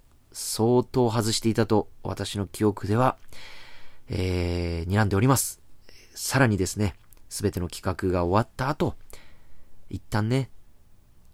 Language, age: Japanese, 30-49